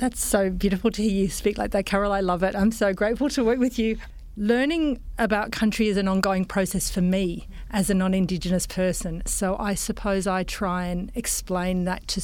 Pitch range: 185-210 Hz